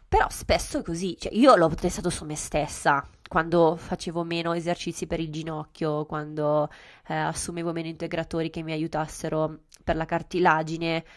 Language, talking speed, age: Italian, 155 wpm, 20-39